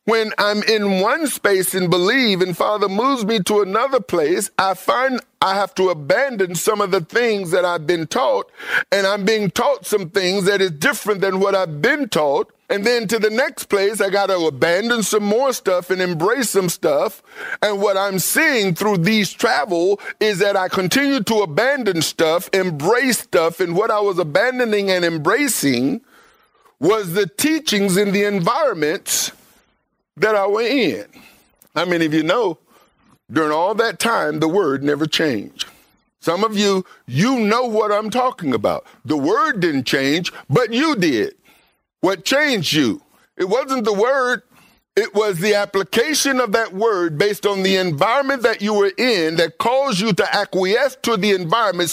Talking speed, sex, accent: 175 wpm, male, American